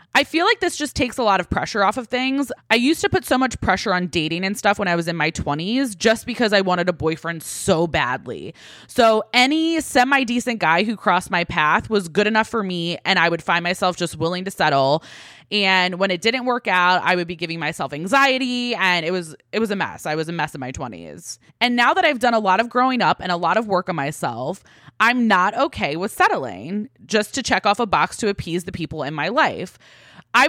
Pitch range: 175-245 Hz